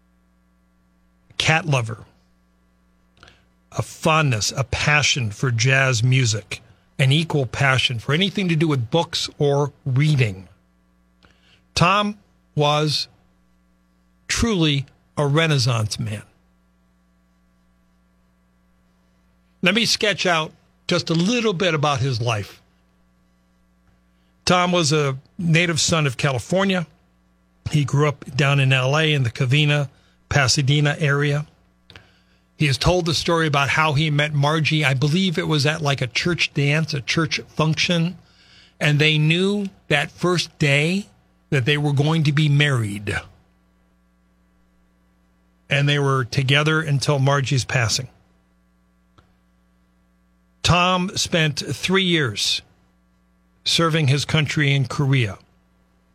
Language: English